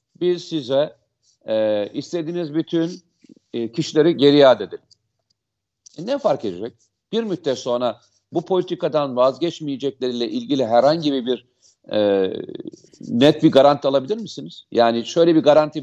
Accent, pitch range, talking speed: native, 120-170 Hz, 120 wpm